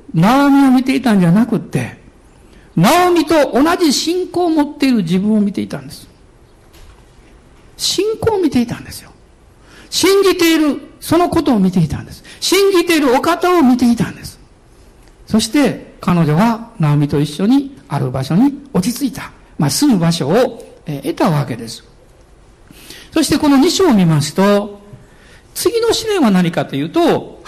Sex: male